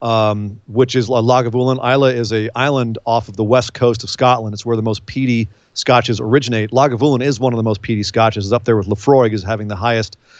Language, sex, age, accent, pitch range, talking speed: English, male, 40-59, American, 110-135 Hz, 225 wpm